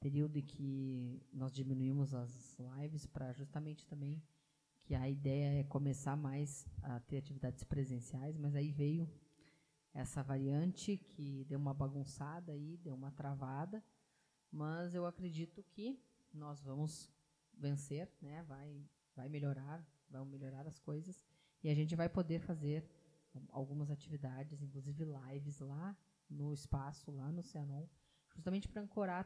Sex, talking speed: female, 135 wpm